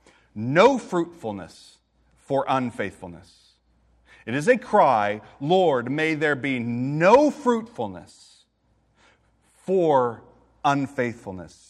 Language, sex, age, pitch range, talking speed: English, male, 40-59, 115-165 Hz, 80 wpm